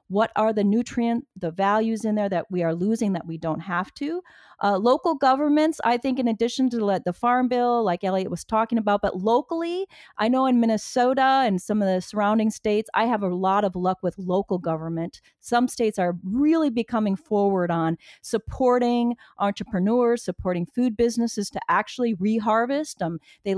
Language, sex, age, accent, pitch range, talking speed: English, female, 40-59, American, 190-255 Hz, 185 wpm